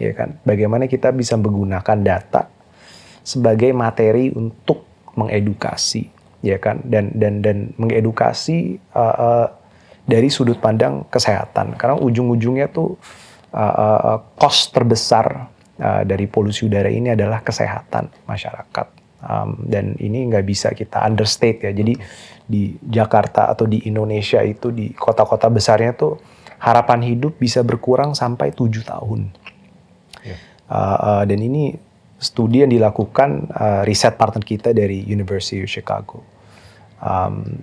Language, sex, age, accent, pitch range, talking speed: Indonesian, male, 30-49, native, 100-120 Hz, 130 wpm